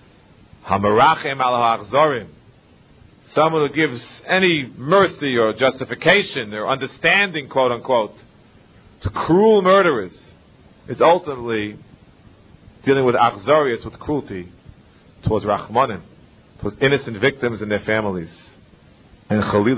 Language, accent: English, American